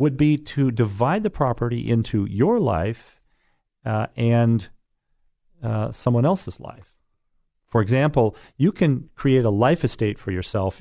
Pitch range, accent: 100-135 Hz, American